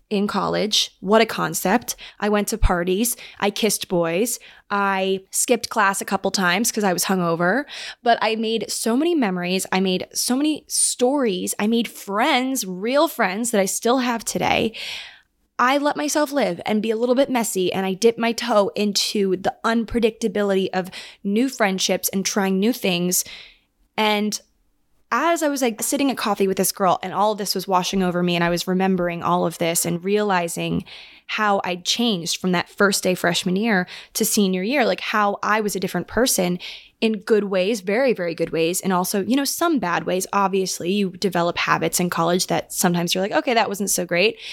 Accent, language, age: American, English, 20-39